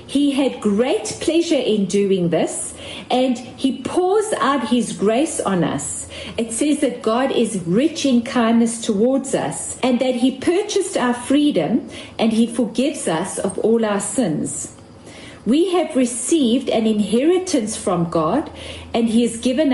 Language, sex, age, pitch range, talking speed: English, female, 40-59, 225-285 Hz, 150 wpm